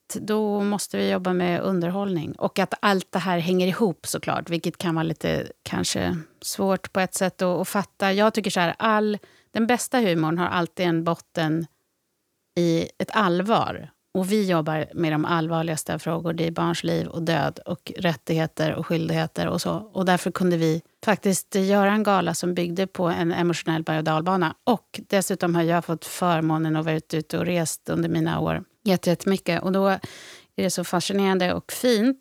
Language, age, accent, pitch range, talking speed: Swedish, 30-49, native, 165-195 Hz, 190 wpm